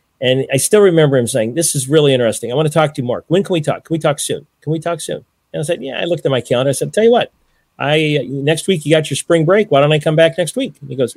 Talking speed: 325 wpm